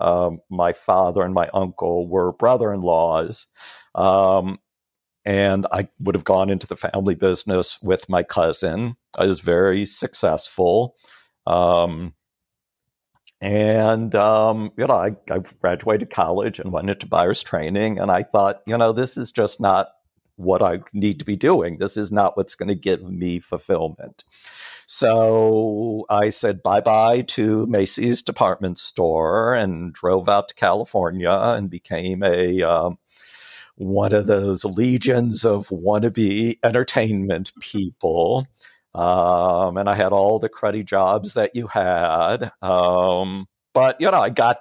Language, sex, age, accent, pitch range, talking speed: English, male, 60-79, American, 95-110 Hz, 145 wpm